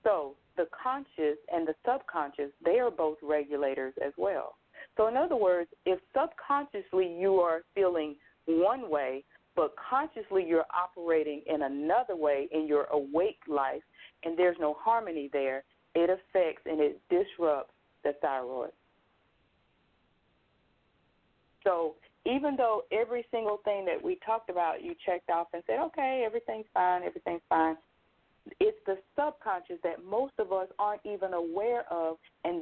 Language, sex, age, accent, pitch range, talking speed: English, female, 40-59, American, 160-230 Hz, 145 wpm